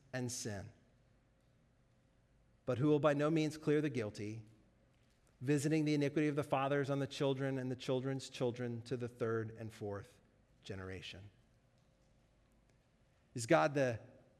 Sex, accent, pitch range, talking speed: male, American, 130-195 Hz, 140 wpm